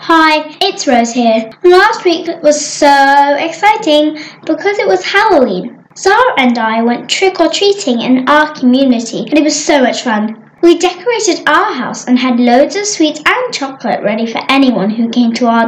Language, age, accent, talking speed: English, 10-29, British, 170 wpm